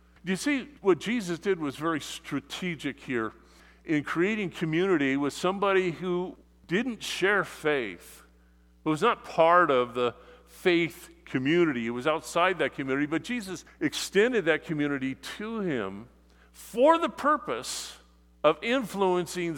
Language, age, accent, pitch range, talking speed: English, 50-69, American, 120-175 Hz, 130 wpm